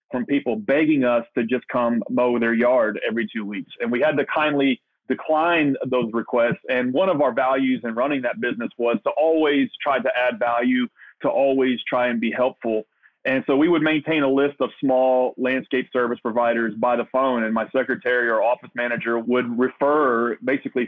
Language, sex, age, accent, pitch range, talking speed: English, male, 40-59, American, 120-160 Hz, 195 wpm